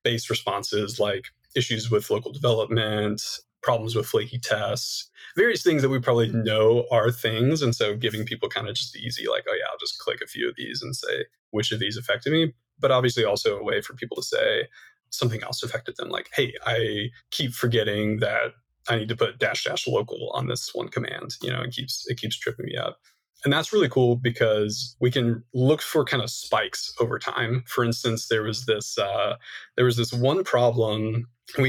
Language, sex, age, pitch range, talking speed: English, male, 20-39, 115-135 Hz, 210 wpm